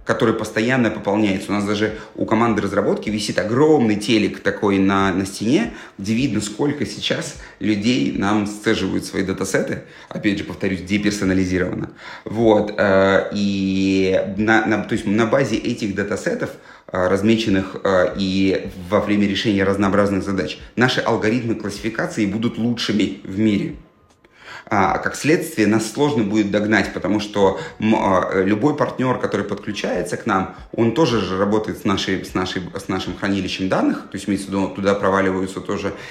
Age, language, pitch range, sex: 30-49, Russian, 100-120 Hz, male